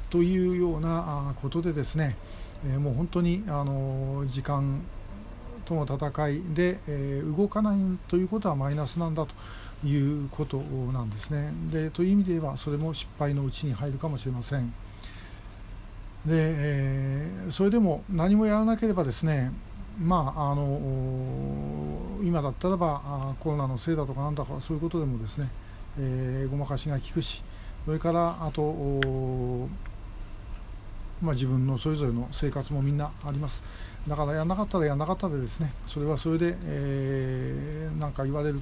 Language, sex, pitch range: Japanese, male, 130-160 Hz